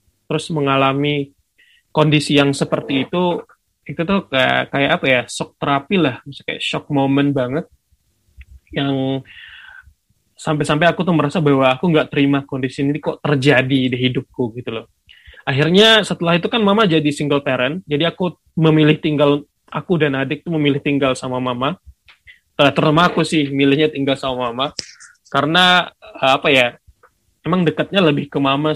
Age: 20-39